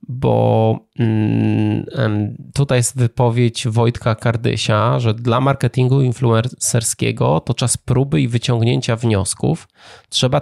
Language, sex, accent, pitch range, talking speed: Polish, male, native, 110-130 Hz, 100 wpm